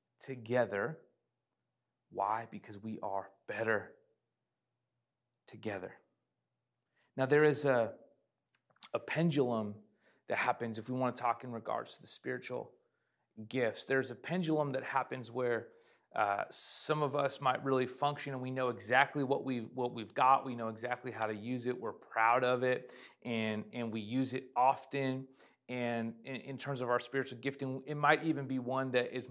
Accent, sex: American, male